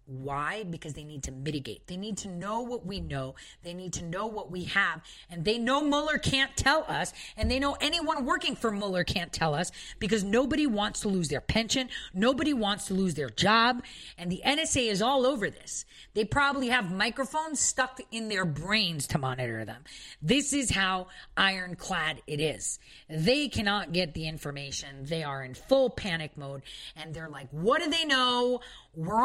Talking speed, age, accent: 190 wpm, 40-59, American